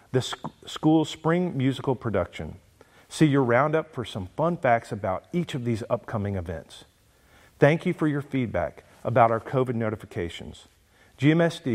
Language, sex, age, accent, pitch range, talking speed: English, male, 50-69, American, 105-140 Hz, 145 wpm